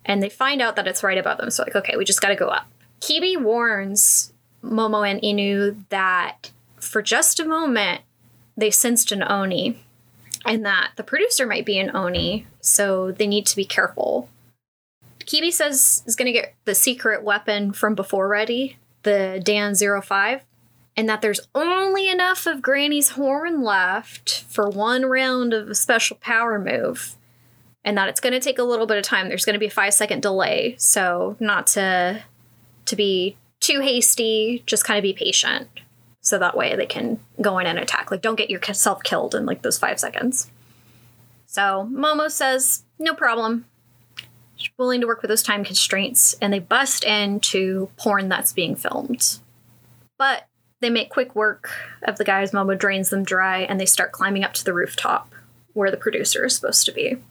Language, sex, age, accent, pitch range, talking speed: English, female, 10-29, American, 185-235 Hz, 185 wpm